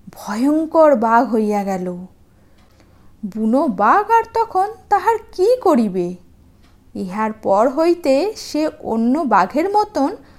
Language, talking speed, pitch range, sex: Bengali, 105 wpm, 210-345 Hz, female